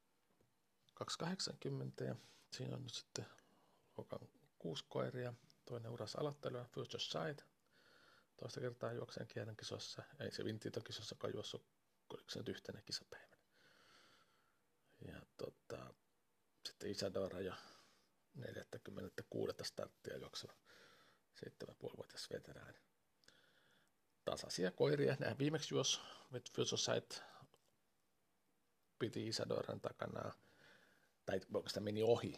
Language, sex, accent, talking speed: Finnish, male, native, 110 wpm